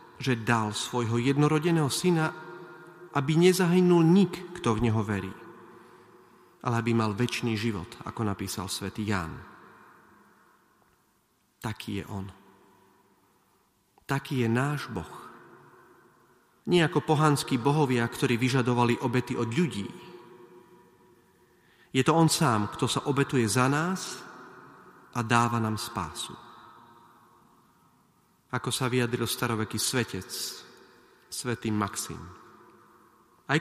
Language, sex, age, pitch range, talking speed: Slovak, male, 40-59, 115-155 Hz, 105 wpm